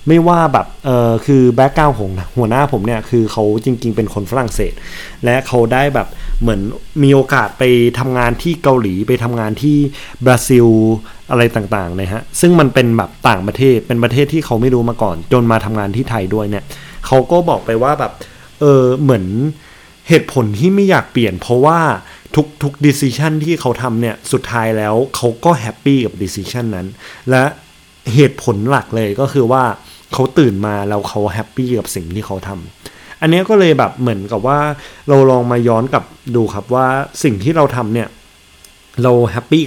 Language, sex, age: Thai, male, 20-39